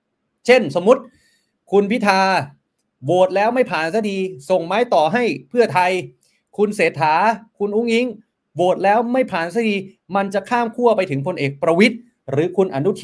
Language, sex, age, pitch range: Thai, male, 30-49, 150-220 Hz